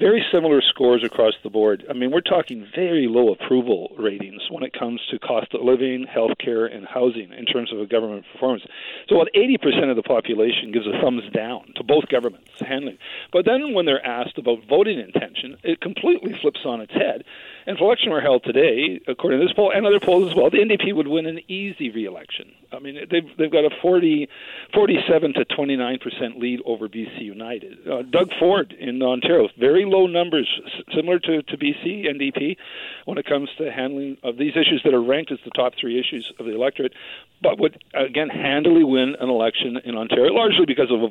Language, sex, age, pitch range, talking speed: English, male, 50-69, 125-170 Hz, 205 wpm